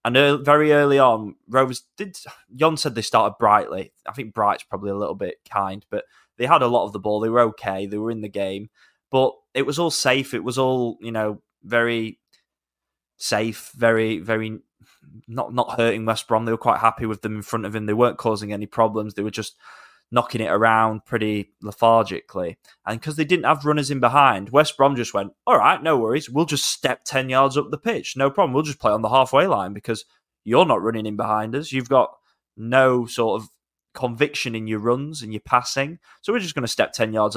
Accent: British